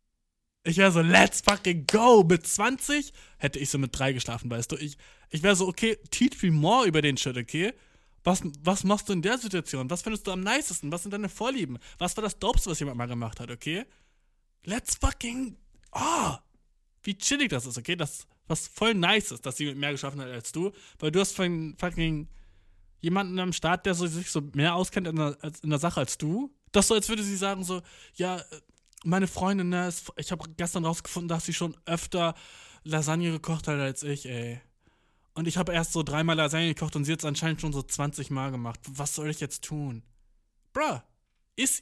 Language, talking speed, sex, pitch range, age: German, 210 wpm, male, 145-205 Hz, 20-39